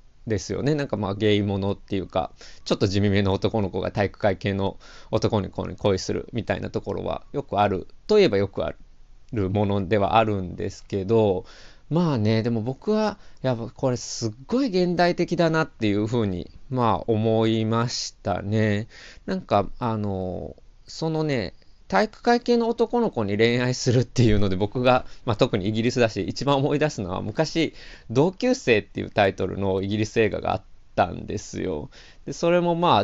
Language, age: Japanese, 20-39